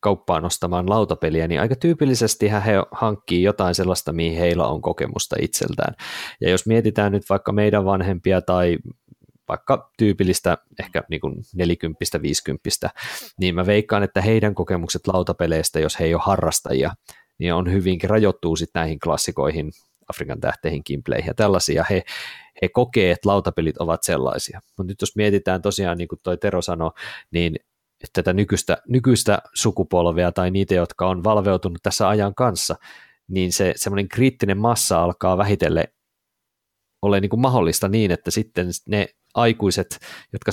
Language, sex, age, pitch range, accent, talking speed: Finnish, male, 30-49, 90-105 Hz, native, 145 wpm